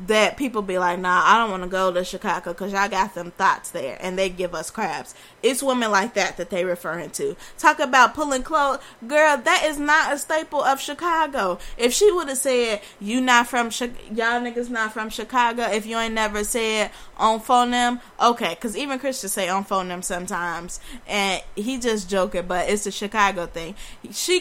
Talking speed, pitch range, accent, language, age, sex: 210 wpm, 195-260 Hz, American, English, 10-29, female